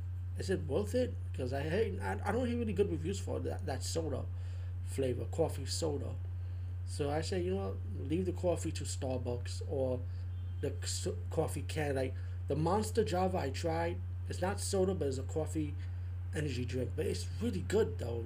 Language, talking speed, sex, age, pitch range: English, 180 wpm, male, 30-49, 90-95 Hz